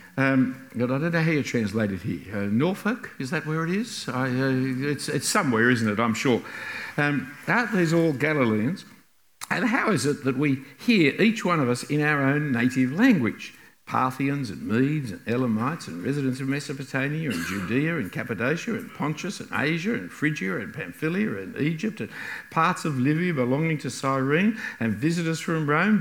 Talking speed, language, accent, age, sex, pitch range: 200 wpm, English, Australian, 60-79, male, 130-210 Hz